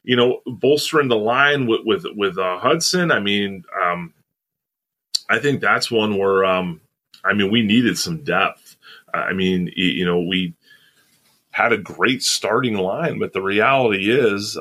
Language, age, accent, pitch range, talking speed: English, 30-49, American, 90-110 Hz, 160 wpm